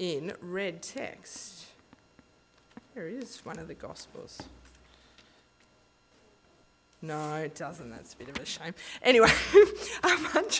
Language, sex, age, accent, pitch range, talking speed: English, female, 20-39, Australian, 200-275 Hz, 120 wpm